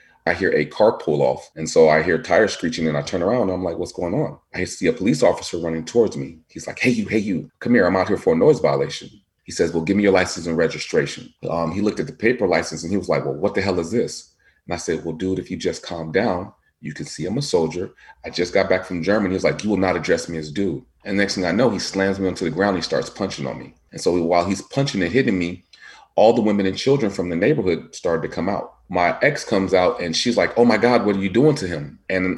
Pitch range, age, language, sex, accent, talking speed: 85-100 Hz, 30-49, English, male, American, 290 wpm